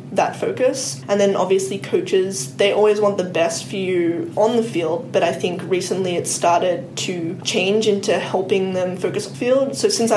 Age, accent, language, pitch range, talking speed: 10-29, Australian, English, 175-205 Hz, 190 wpm